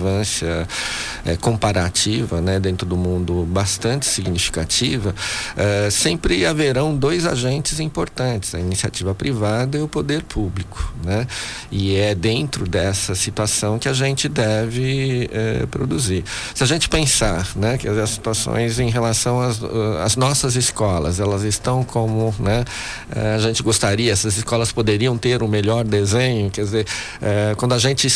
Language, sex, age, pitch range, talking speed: Portuguese, male, 50-69, 100-125 Hz, 140 wpm